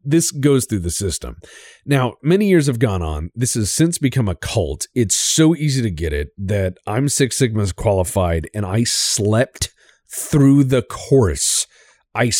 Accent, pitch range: American, 95-135 Hz